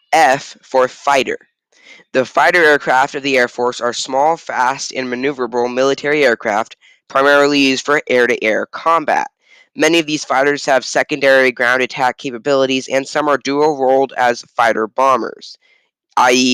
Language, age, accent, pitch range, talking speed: English, 10-29, American, 125-150 Hz, 140 wpm